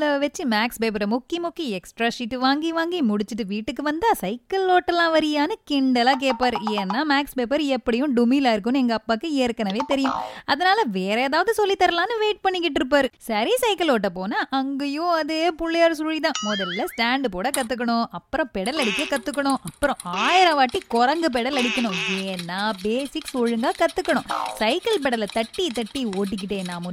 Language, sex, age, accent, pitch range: Tamil, female, 20-39, native, 230-320 Hz